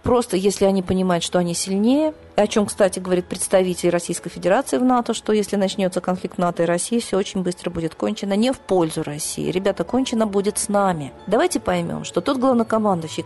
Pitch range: 170-220 Hz